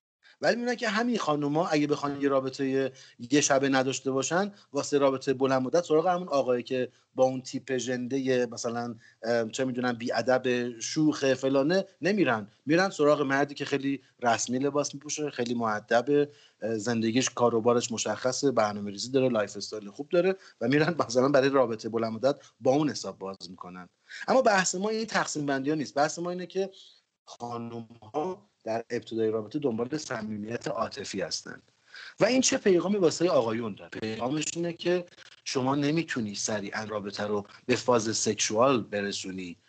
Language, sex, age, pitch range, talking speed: Persian, male, 30-49, 115-150 Hz, 150 wpm